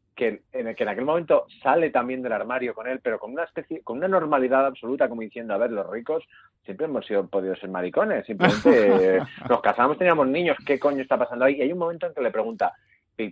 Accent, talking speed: Spanish, 240 wpm